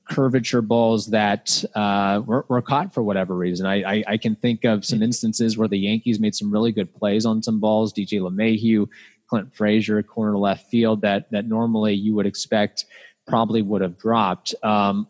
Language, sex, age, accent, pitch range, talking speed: English, male, 20-39, American, 105-130 Hz, 190 wpm